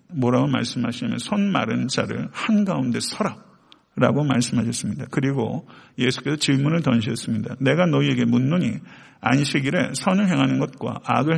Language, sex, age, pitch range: Korean, male, 50-69, 125-170 Hz